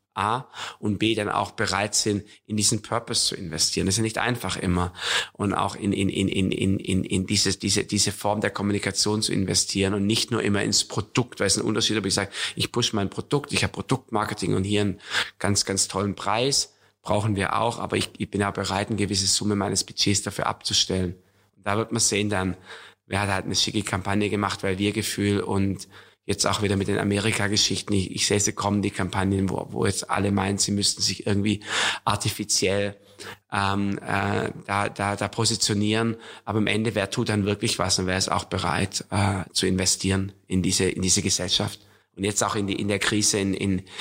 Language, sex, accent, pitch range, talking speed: German, male, German, 95-105 Hz, 210 wpm